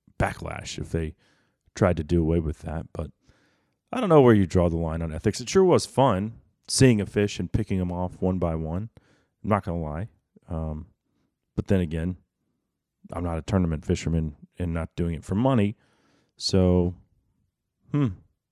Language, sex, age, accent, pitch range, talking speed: English, male, 30-49, American, 85-110 Hz, 180 wpm